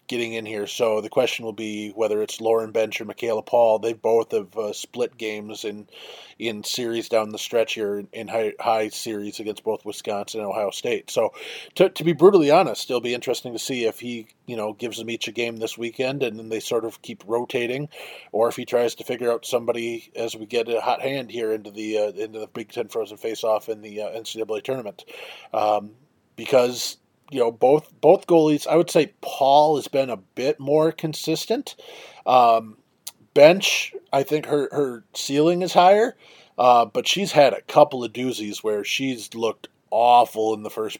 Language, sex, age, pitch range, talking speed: English, male, 20-39, 110-145 Hz, 200 wpm